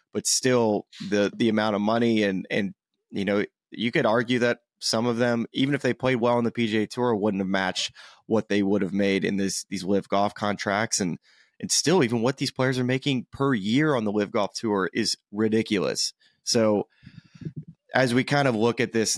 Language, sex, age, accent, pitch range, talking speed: English, male, 20-39, American, 100-125 Hz, 210 wpm